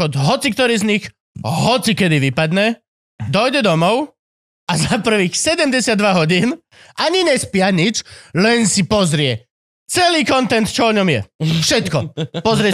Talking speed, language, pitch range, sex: 130 wpm, Slovak, 195-295 Hz, male